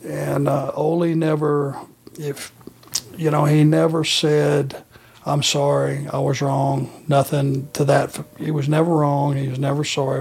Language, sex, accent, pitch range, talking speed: English, male, American, 145-165 Hz, 155 wpm